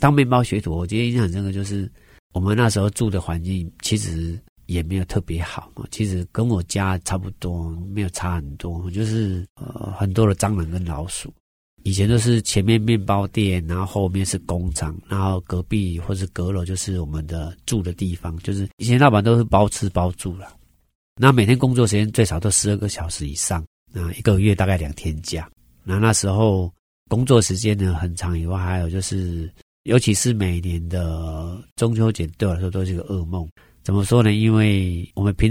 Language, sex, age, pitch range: Chinese, male, 40-59, 90-105 Hz